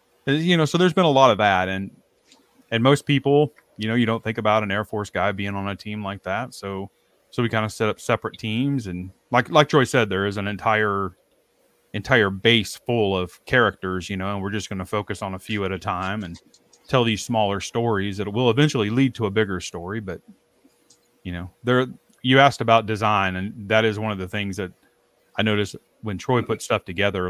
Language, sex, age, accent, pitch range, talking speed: English, male, 30-49, American, 95-120 Hz, 225 wpm